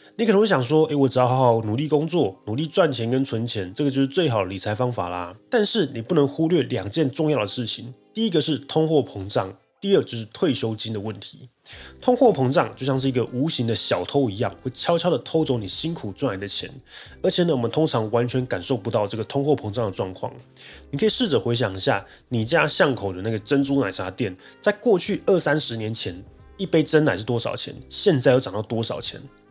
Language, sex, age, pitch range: Chinese, male, 20-39, 105-150 Hz